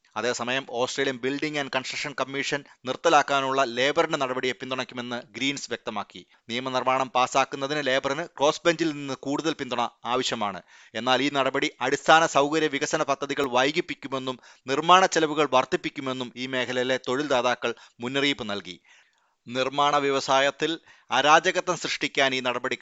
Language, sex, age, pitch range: Malayalam, male, 30-49, 125-150 Hz